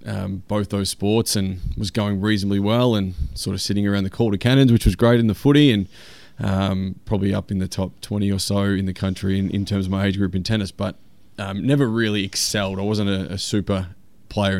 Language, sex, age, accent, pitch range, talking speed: English, male, 20-39, Australian, 95-105 Hz, 230 wpm